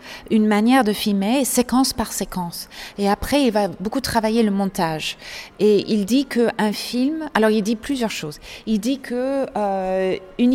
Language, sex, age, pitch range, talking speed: French, female, 30-49, 185-230 Hz, 165 wpm